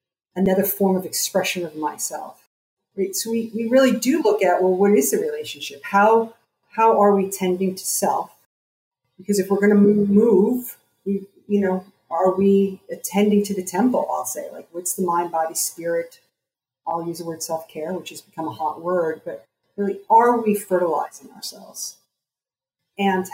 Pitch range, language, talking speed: 175-215 Hz, English, 170 wpm